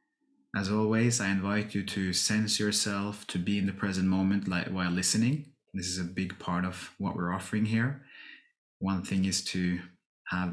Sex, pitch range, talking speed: male, 90-110 Hz, 180 wpm